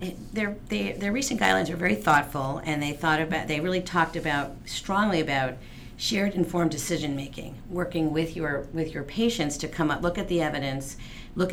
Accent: American